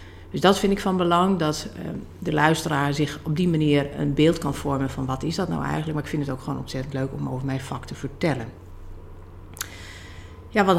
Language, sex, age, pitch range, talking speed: Dutch, female, 50-69, 130-155 Hz, 215 wpm